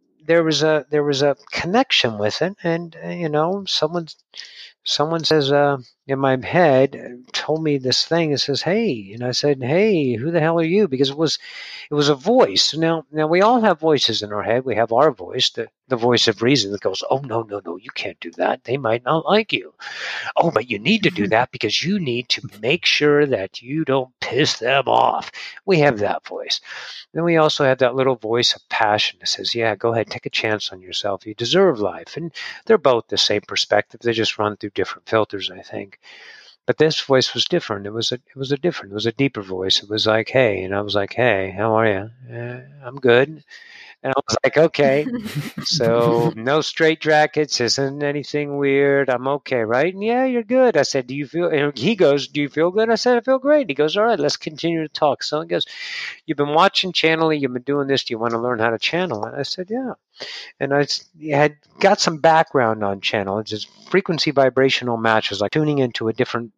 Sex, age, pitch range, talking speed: male, 50-69, 115-160 Hz, 225 wpm